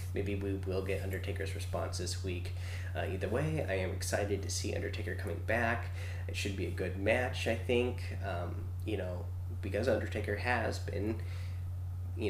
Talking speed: 170 wpm